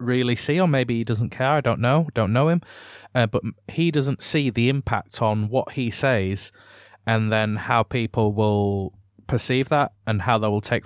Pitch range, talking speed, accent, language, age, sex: 105-130 Hz, 200 wpm, British, English, 20-39, male